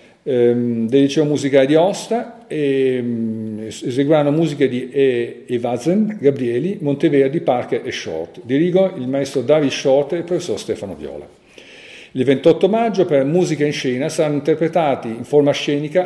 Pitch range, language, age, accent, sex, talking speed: 130-165 Hz, Italian, 50-69, native, male, 140 wpm